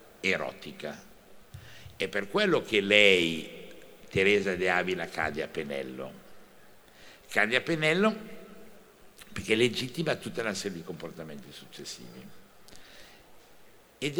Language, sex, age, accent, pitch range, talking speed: Italian, male, 60-79, native, 90-115 Hz, 100 wpm